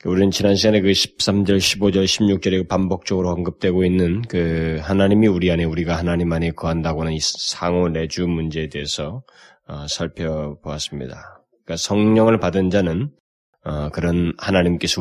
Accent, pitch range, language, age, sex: native, 75-95 Hz, Korean, 20-39, male